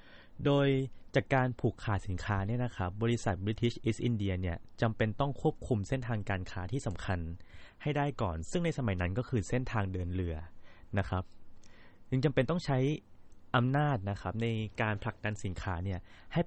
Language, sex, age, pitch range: Thai, male, 20-39, 90-125 Hz